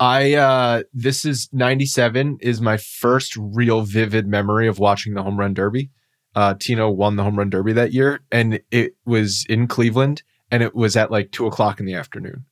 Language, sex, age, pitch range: English, male, 20-39, 105-135 Hz